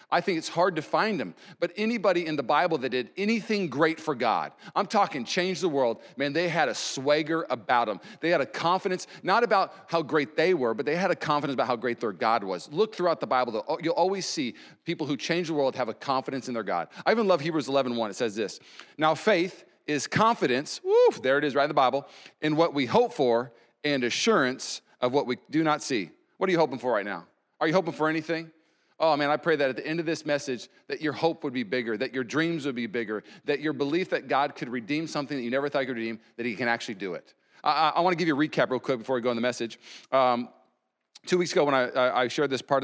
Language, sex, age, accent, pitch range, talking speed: English, male, 40-59, American, 125-165 Hz, 260 wpm